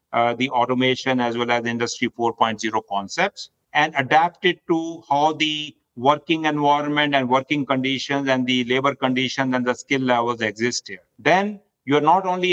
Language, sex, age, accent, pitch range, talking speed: English, male, 50-69, Indian, 130-155 Hz, 165 wpm